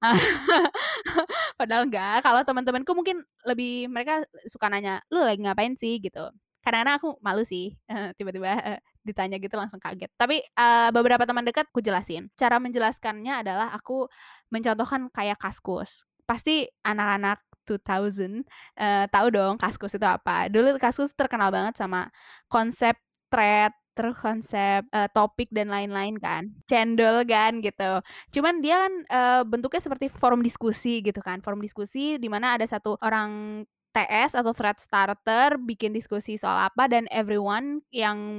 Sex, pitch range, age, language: female, 205-250 Hz, 20-39, Indonesian